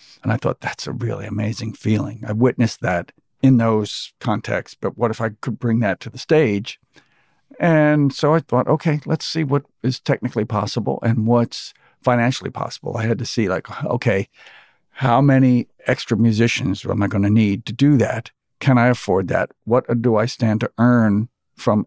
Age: 60-79